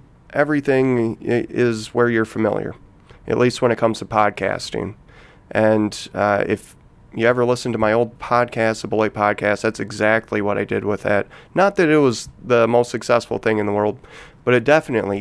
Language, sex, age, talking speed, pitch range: English, male, 30-49, 180 wpm, 105-125 Hz